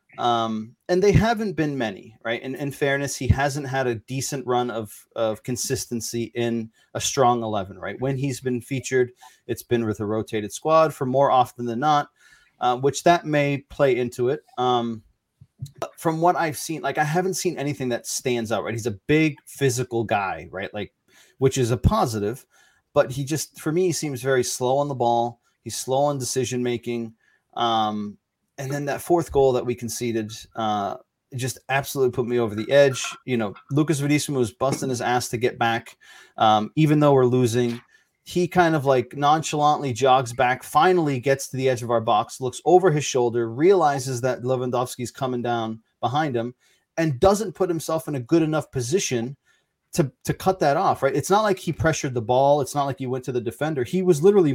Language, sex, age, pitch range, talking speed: English, male, 30-49, 120-145 Hz, 200 wpm